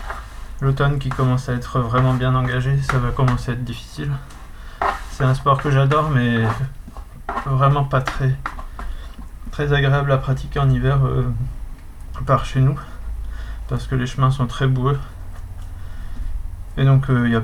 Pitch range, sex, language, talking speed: 105-130 Hz, male, French, 160 wpm